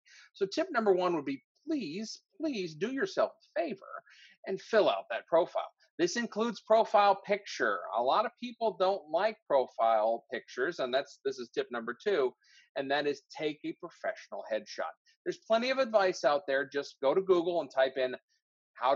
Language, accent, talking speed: English, American, 180 wpm